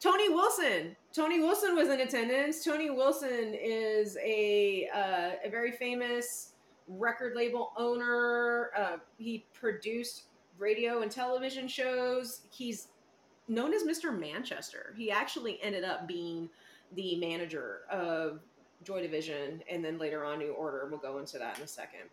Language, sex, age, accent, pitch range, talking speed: English, female, 30-49, American, 185-265 Hz, 145 wpm